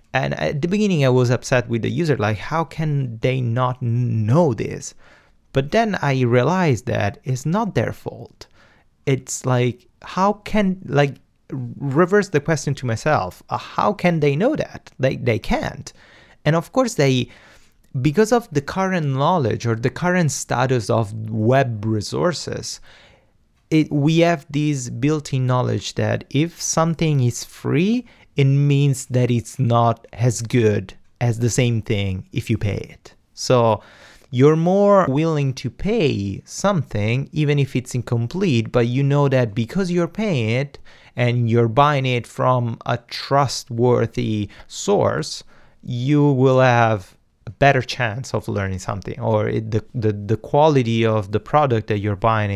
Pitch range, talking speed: 115-145 Hz, 155 wpm